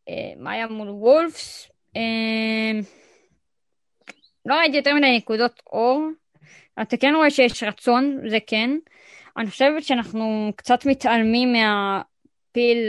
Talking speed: 105 wpm